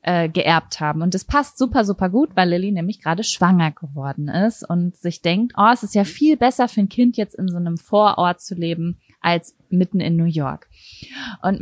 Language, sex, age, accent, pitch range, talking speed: German, female, 20-39, German, 175-210 Hz, 210 wpm